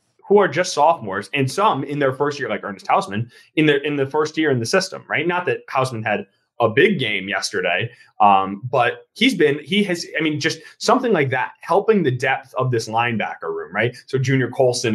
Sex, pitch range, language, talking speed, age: male, 125-175 Hz, English, 215 wpm, 20-39